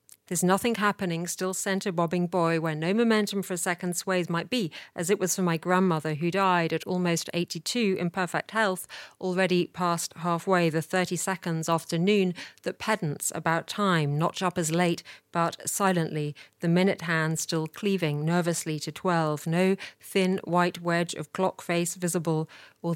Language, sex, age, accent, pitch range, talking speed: English, female, 40-59, British, 155-180 Hz, 170 wpm